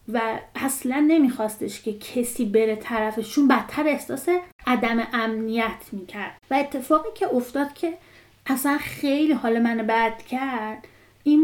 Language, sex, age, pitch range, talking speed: Persian, female, 30-49, 225-305 Hz, 125 wpm